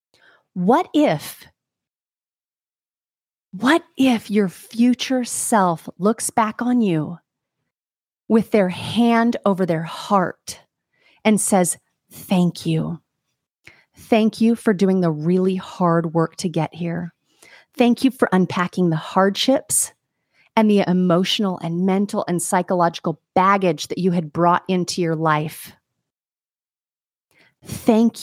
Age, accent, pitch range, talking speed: 30-49, American, 170-215 Hz, 115 wpm